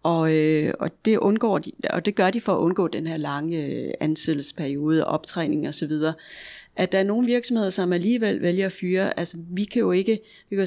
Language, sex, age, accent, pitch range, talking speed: Danish, female, 30-49, native, 165-205 Hz, 220 wpm